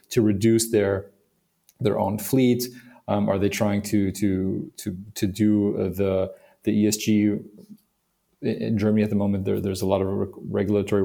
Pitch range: 100-115 Hz